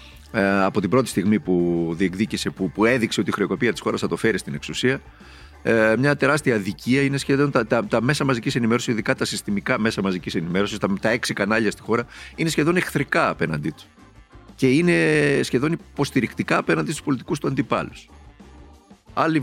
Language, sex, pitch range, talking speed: Greek, male, 95-135 Hz, 175 wpm